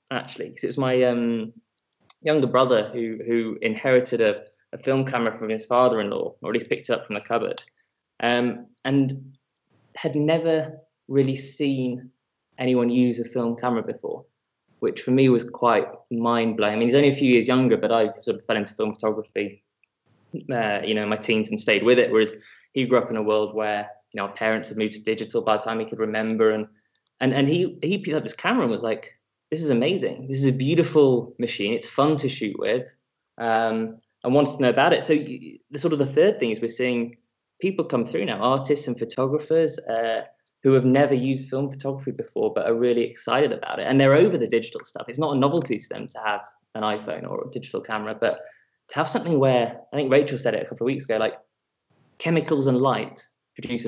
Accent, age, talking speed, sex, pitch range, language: British, 20-39, 220 wpm, male, 115-140 Hz, English